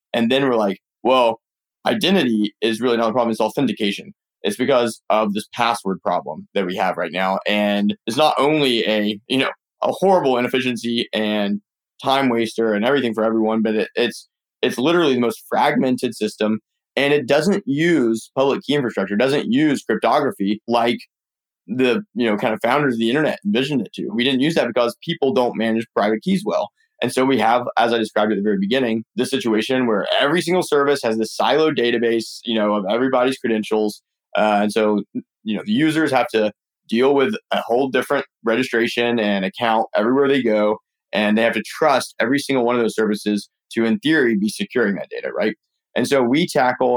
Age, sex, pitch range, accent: 20-39, male, 105-135 Hz, American